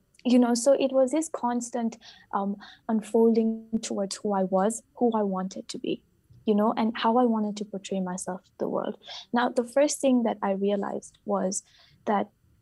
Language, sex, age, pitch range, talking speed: English, female, 20-39, 200-245 Hz, 185 wpm